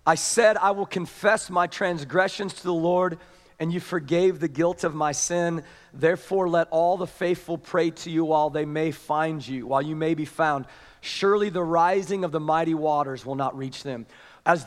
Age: 40-59